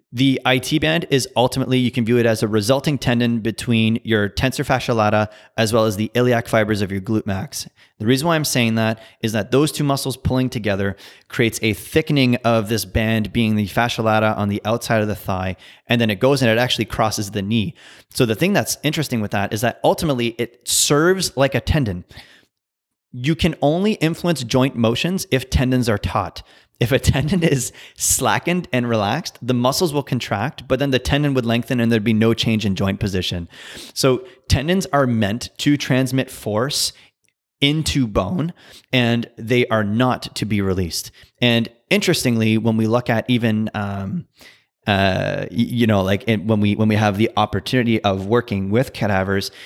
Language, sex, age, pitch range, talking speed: English, male, 30-49, 110-130 Hz, 190 wpm